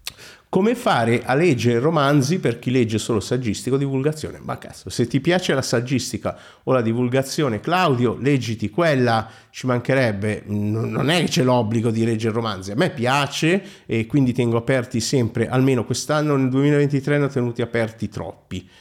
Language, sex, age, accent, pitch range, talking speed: Italian, male, 50-69, native, 110-150 Hz, 165 wpm